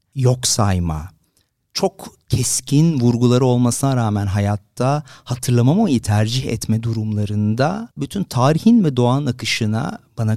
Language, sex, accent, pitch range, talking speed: Turkish, male, native, 105-135 Hz, 105 wpm